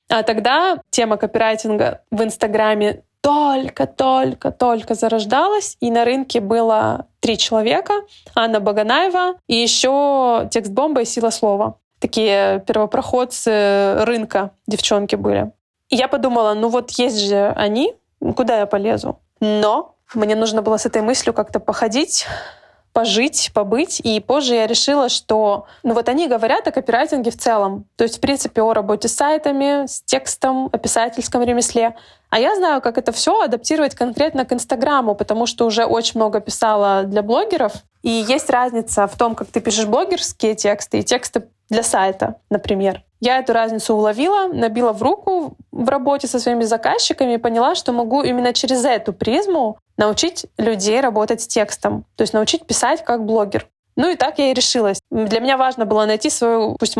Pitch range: 220-260 Hz